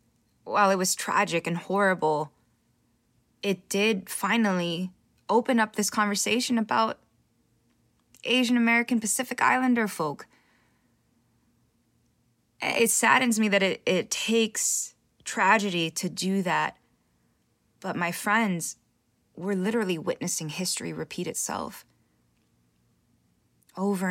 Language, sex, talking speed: English, female, 100 wpm